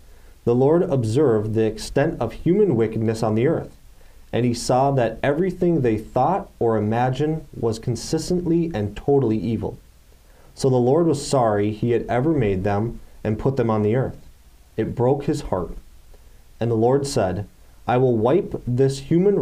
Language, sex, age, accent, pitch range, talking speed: English, male, 30-49, American, 105-135 Hz, 165 wpm